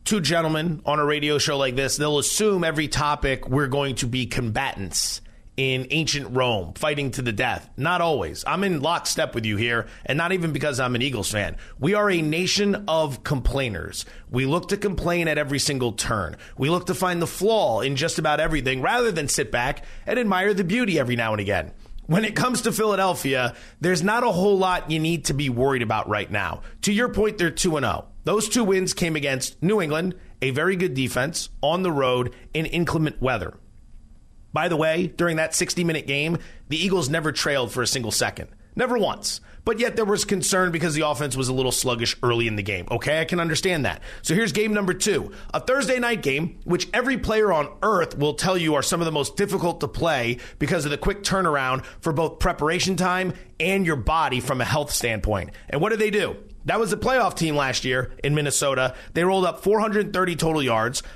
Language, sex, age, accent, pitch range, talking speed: English, male, 30-49, American, 130-185 Hz, 215 wpm